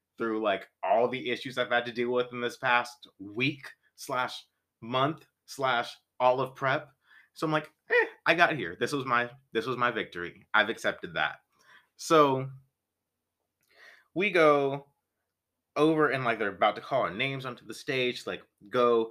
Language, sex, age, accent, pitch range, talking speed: English, male, 30-49, American, 115-145 Hz, 175 wpm